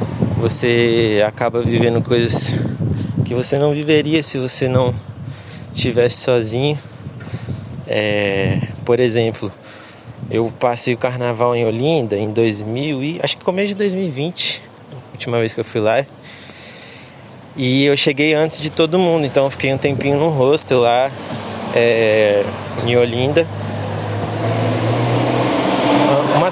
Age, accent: 20-39, Brazilian